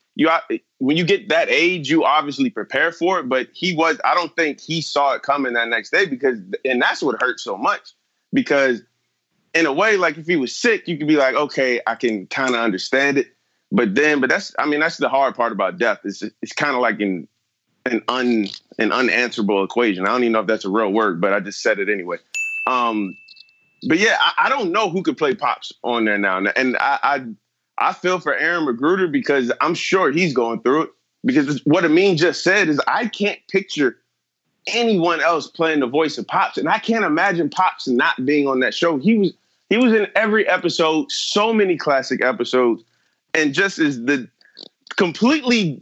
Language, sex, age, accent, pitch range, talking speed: English, male, 30-49, American, 130-210 Hz, 205 wpm